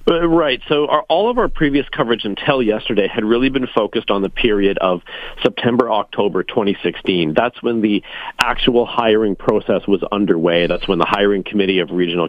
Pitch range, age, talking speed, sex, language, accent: 90-120 Hz, 40-59, 170 wpm, male, English, American